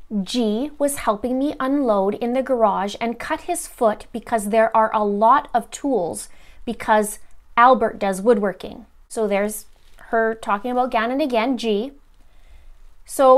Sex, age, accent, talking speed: female, 30-49, American, 145 wpm